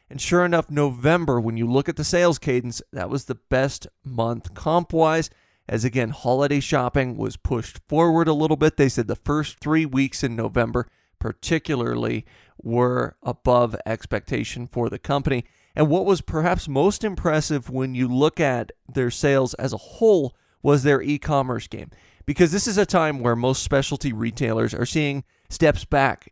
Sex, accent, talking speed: male, American, 170 wpm